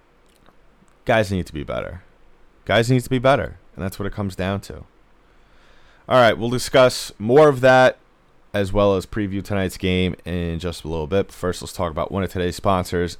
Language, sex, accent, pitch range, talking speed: English, male, American, 85-100 Hz, 195 wpm